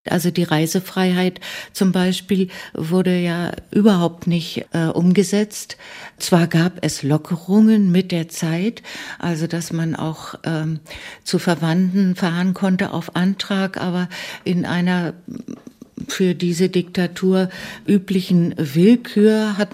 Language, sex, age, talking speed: German, female, 60-79, 115 wpm